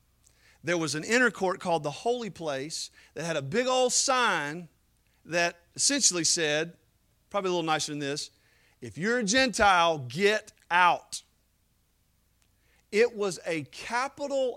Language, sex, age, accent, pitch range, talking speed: English, male, 40-59, American, 115-165 Hz, 140 wpm